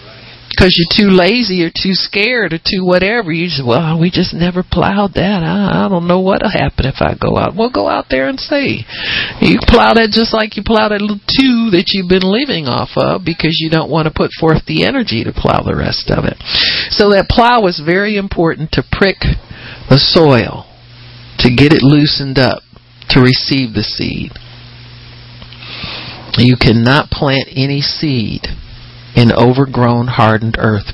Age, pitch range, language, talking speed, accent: 50-69, 115-160 Hz, English, 180 wpm, American